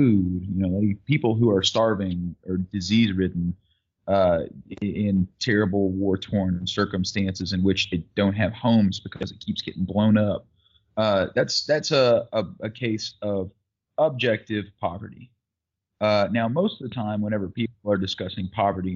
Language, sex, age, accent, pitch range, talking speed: English, male, 30-49, American, 95-115 Hz, 140 wpm